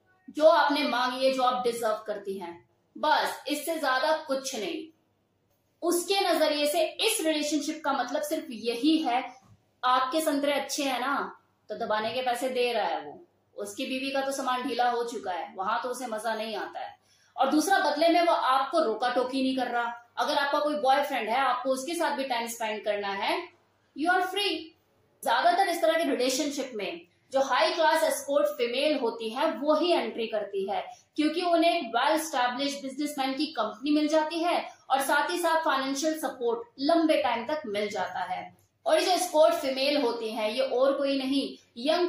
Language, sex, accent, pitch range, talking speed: Hindi, female, native, 240-310 Hz, 185 wpm